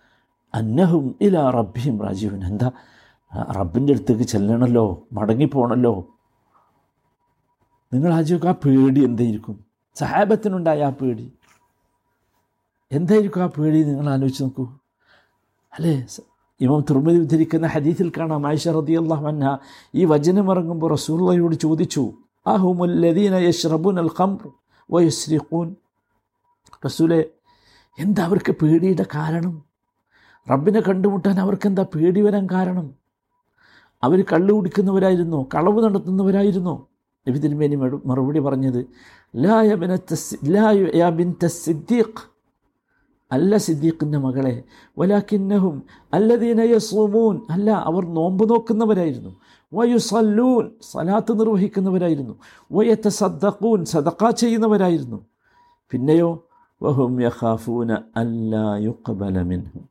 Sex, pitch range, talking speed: male, 135-195 Hz, 65 wpm